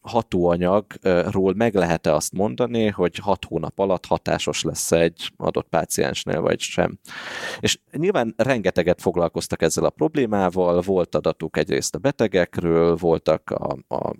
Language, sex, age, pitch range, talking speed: Hungarian, male, 30-49, 85-110 Hz, 130 wpm